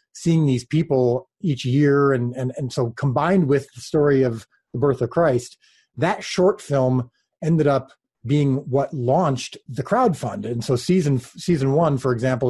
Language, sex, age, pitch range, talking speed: English, male, 30-49, 125-145 Hz, 170 wpm